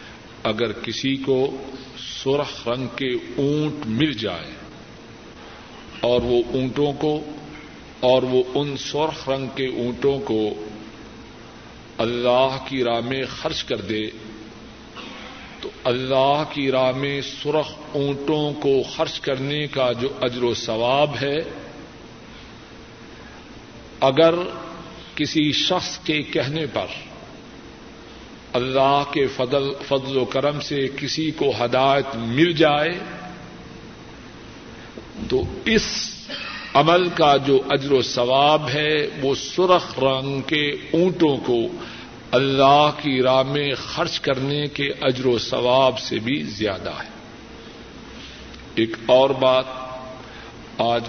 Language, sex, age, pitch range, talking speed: Urdu, male, 50-69, 125-145 Hz, 110 wpm